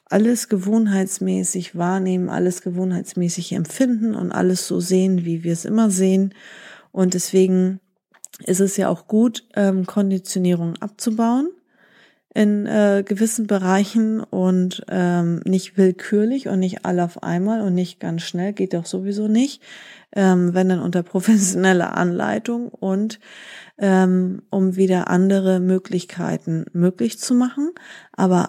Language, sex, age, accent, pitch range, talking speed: German, female, 30-49, German, 180-210 Hz, 130 wpm